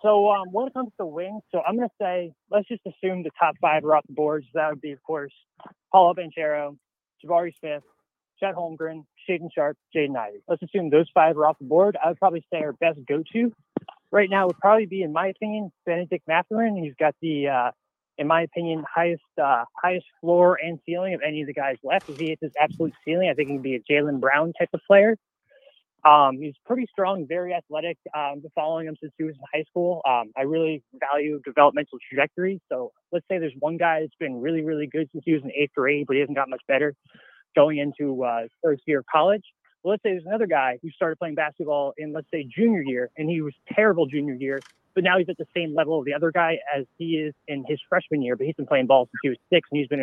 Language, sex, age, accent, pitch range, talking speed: English, male, 20-39, American, 145-180 Hz, 240 wpm